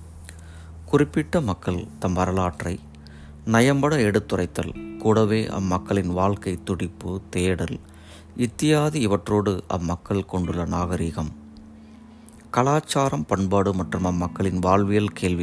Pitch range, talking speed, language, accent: 85-110 Hz, 85 wpm, Tamil, native